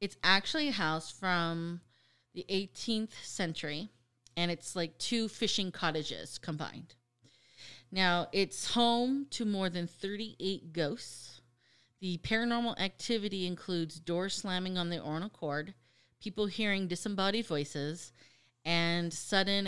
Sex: female